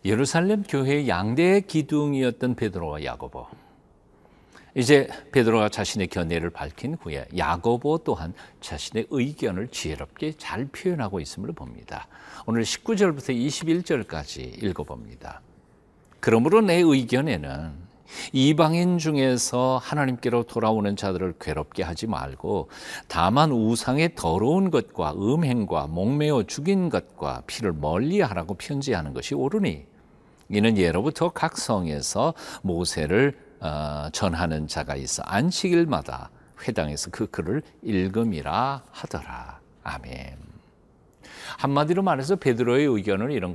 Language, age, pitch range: Korean, 50-69, 90-155 Hz